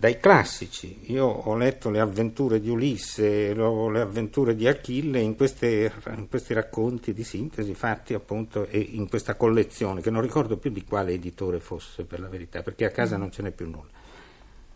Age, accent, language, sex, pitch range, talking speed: 60-79, native, Italian, male, 105-125 Hz, 185 wpm